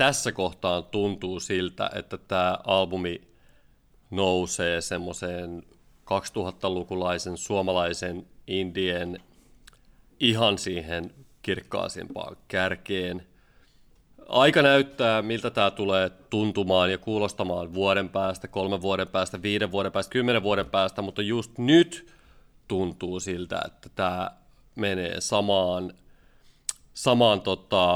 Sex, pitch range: male, 90-115 Hz